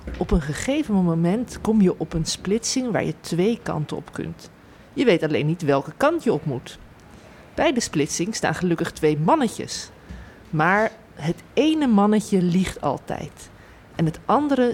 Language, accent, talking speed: Dutch, Dutch, 165 wpm